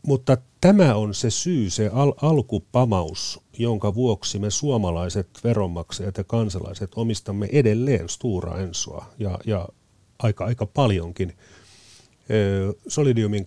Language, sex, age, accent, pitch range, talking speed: Finnish, male, 40-59, native, 100-120 Hz, 105 wpm